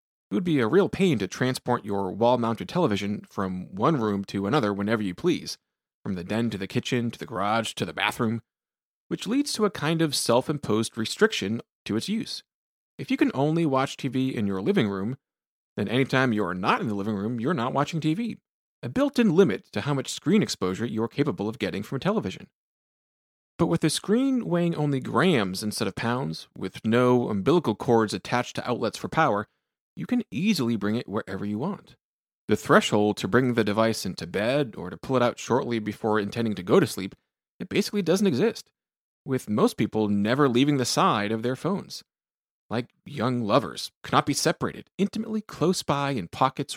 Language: English